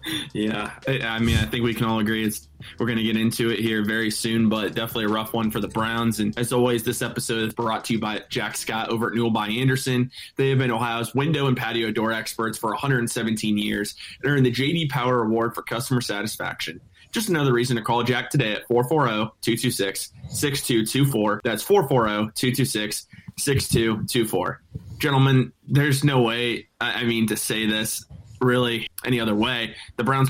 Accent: American